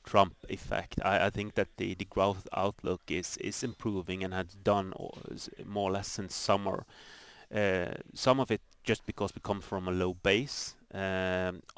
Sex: male